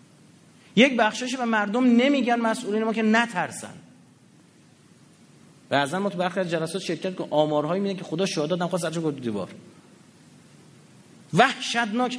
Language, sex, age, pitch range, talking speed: Persian, male, 30-49, 155-230 Hz, 130 wpm